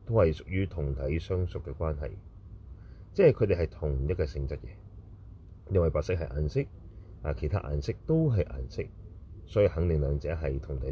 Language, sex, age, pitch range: Chinese, male, 30-49, 75-100 Hz